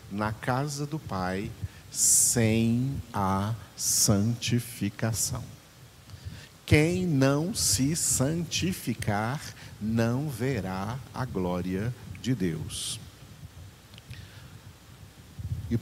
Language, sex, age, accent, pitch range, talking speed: Portuguese, male, 50-69, Brazilian, 105-130 Hz, 70 wpm